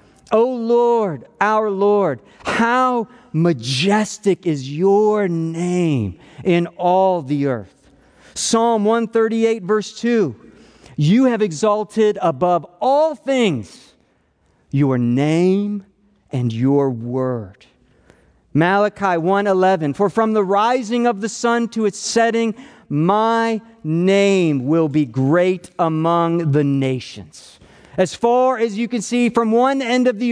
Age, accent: 40-59, American